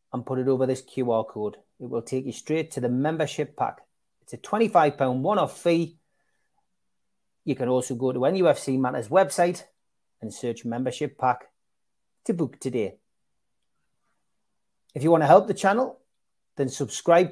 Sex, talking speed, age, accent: male, 155 wpm, 30-49, British